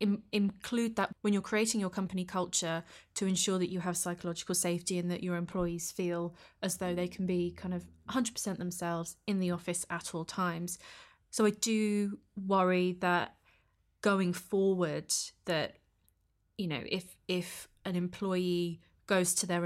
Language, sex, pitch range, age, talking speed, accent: English, female, 175-195 Hz, 20-39, 160 wpm, British